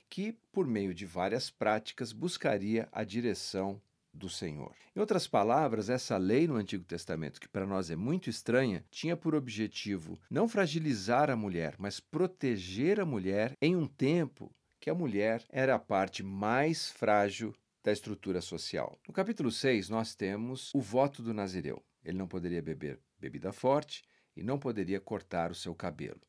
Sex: male